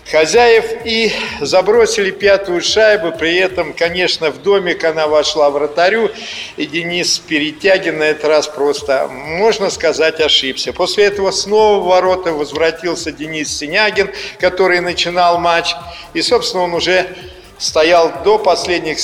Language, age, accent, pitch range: Russian, 50-69, native, 150-190 Hz